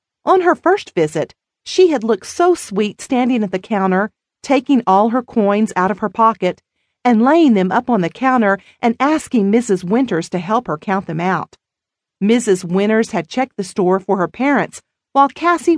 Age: 40-59